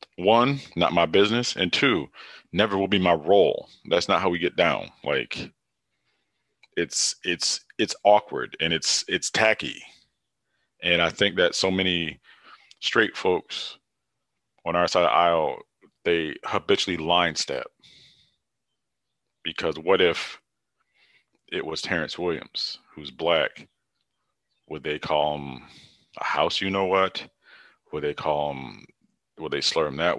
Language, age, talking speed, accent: English, 40-59, 140 wpm, American